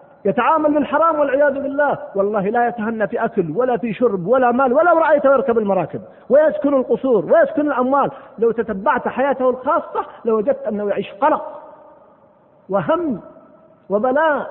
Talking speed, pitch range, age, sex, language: 135 wpm, 200-305 Hz, 40-59, male, Arabic